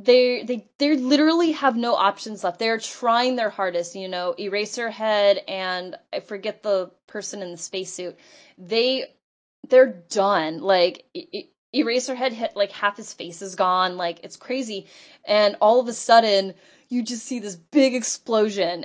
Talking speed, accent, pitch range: 155 wpm, American, 185-250 Hz